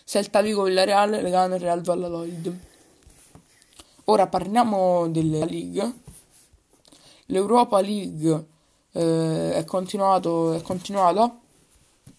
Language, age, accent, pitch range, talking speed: Italian, 20-39, native, 180-205 Hz, 100 wpm